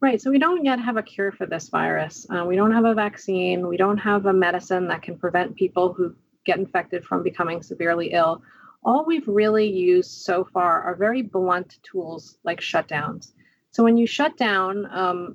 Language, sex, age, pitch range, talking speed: English, female, 30-49, 180-220 Hz, 200 wpm